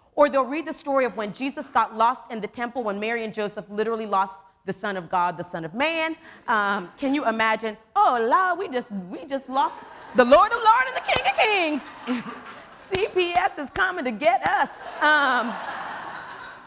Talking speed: 195 wpm